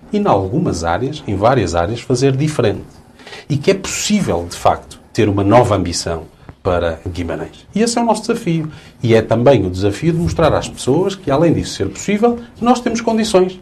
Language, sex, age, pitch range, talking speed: Portuguese, male, 40-59, 125-185 Hz, 195 wpm